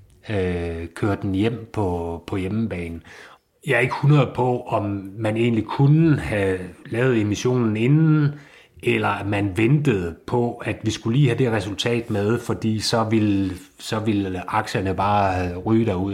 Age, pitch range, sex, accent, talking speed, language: 30-49, 90-115 Hz, male, native, 150 wpm, Danish